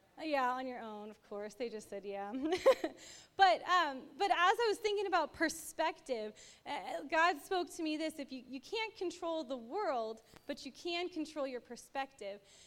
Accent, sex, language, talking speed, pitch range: American, female, English, 180 wpm, 260-335 Hz